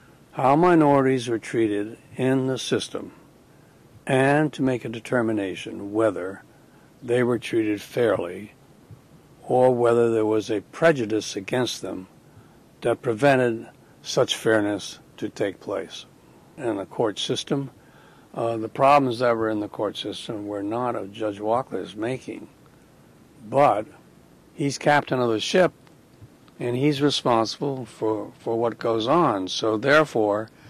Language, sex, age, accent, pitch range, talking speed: English, male, 60-79, American, 110-135 Hz, 130 wpm